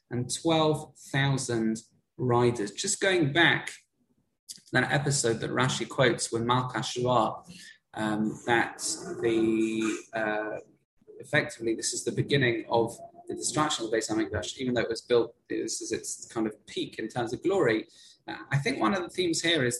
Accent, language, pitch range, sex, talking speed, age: British, English, 115-145 Hz, male, 165 wpm, 20-39